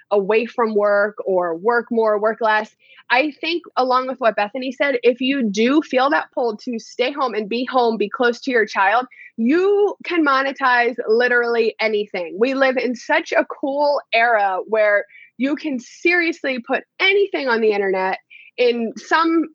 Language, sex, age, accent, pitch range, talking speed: English, female, 20-39, American, 215-270 Hz, 170 wpm